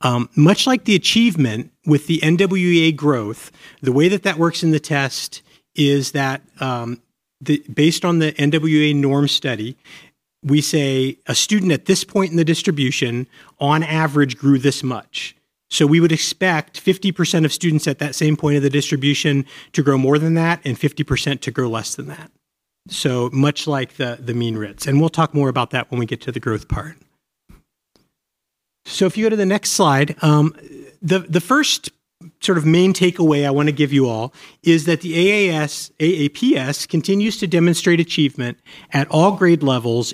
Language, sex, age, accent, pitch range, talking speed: English, male, 40-59, American, 135-170 Hz, 180 wpm